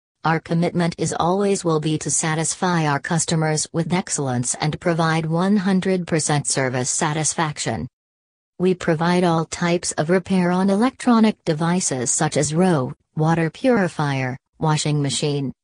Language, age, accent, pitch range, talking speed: English, 40-59, American, 140-175 Hz, 125 wpm